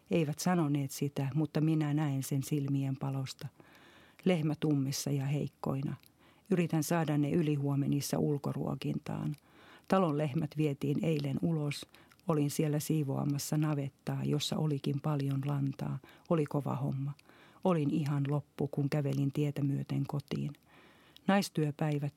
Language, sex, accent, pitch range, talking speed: Finnish, female, native, 140-155 Hz, 115 wpm